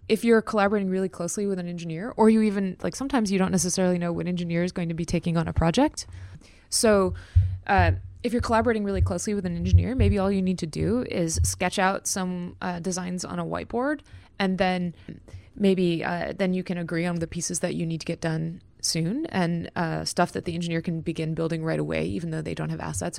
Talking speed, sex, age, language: 225 wpm, female, 20-39, English